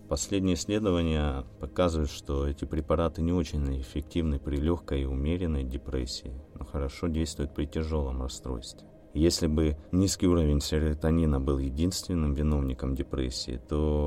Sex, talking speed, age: male, 130 wpm, 30-49